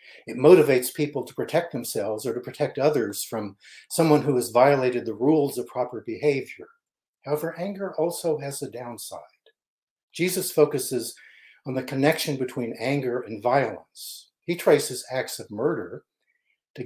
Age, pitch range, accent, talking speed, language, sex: 50-69, 125-165 Hz, American, 145 wpm, English, male